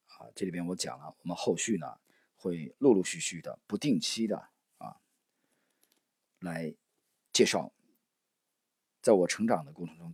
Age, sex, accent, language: 40-59, male, native, Chinese